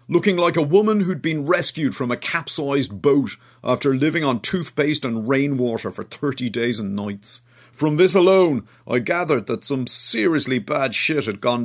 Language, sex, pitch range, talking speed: English, male, 120-170 Hz, 175 wpm